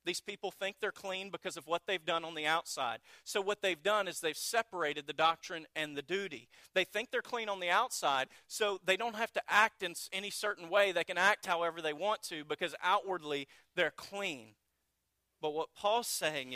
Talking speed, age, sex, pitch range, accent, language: 205 wpm, 40-59, male, 155-200 Hz, American, English